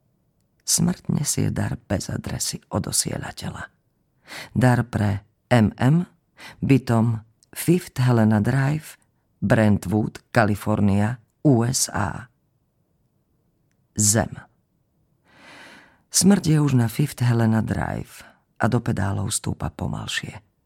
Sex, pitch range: female, 105-135 Hz